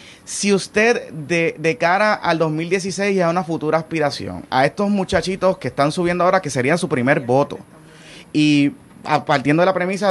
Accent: Venezuelan